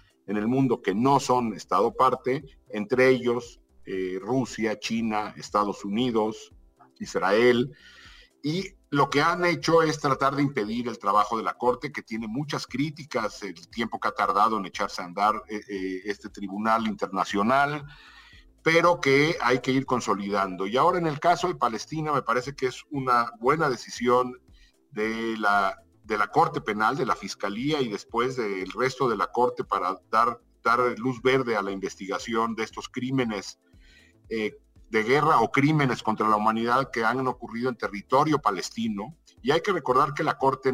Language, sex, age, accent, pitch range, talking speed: English, male, 50-69, Mexican, 105-135 Hz, 170 wpm